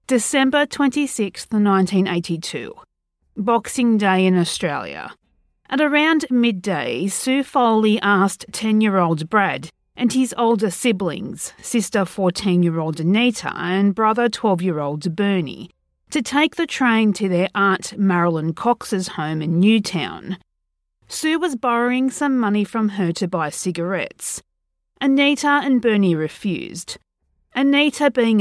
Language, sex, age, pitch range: English, female, 40-59, 175-245 Hz